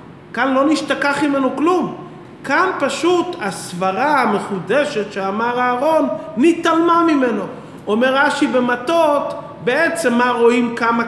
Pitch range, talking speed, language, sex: 200-280 Hz, 110 wpm, Hebrew, male